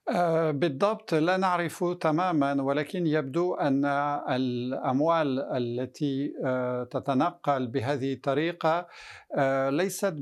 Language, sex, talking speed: Arabic, male, 75 wpm